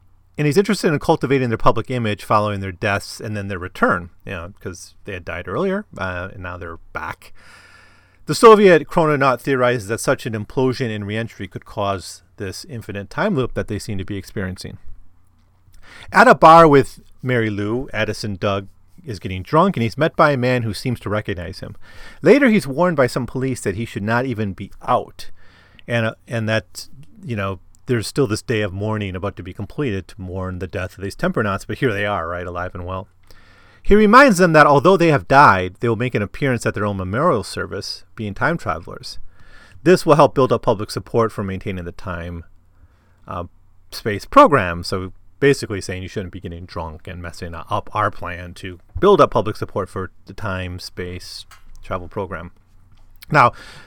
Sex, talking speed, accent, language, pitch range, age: male, 195 wpm, American, English, 95-125 Hz, 30-49